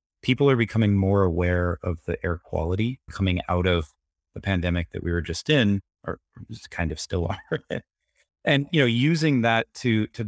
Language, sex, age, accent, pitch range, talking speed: English, male, 30-49, American, 85-110 Hz, 185 wpm